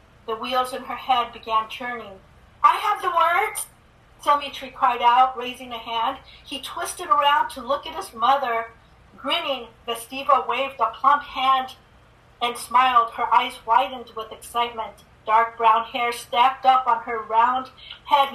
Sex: female